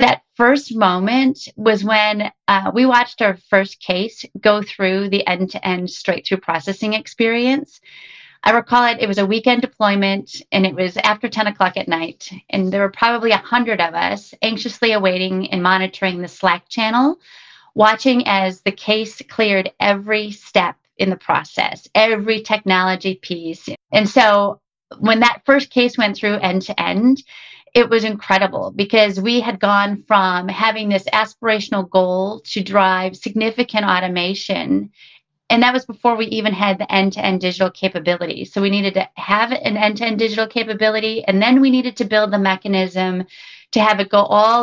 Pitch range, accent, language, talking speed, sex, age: 195-235 Hz, American, English, 160 wpm, female, 30-49